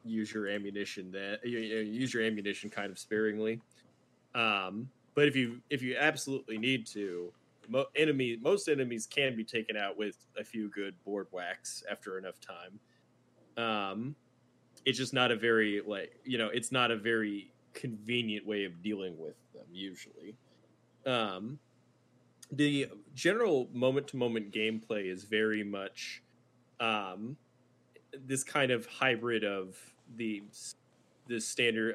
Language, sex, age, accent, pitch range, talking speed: English, male, 20-39, American, 105-130 Hz, 140 wpm